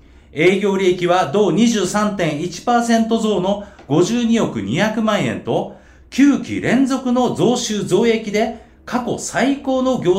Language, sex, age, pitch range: Japanese, male, 40-59, 170-225 Hz